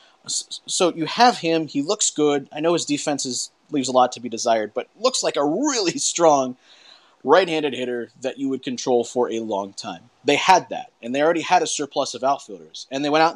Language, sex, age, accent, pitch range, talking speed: English, male, 30-49, American, 125-170 Hz, 220 wpm